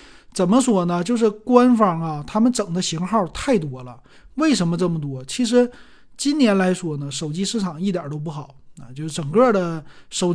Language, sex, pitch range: Chinese, male, 165-220 Hz